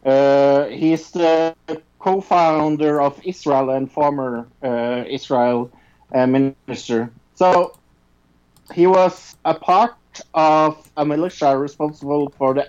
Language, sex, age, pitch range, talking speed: English, male, 50-69, 130-170 Hz, 115 wpm